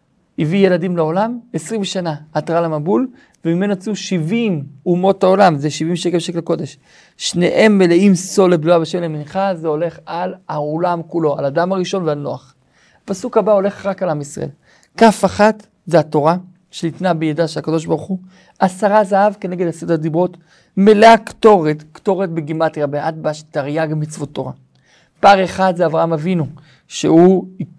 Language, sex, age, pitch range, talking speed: Hebrew, male, 50-69, 160-195 Hz, 150 wpm